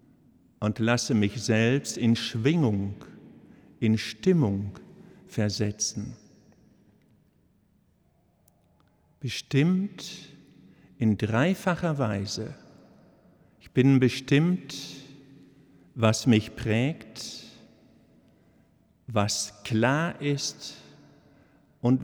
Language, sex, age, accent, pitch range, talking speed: German, male, 60-79, German, 115-160 Hz, 65 wpm